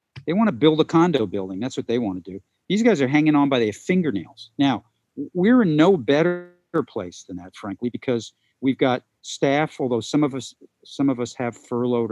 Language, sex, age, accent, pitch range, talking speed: English, male, 50-69, American, 115-145 Hz, 215 wpm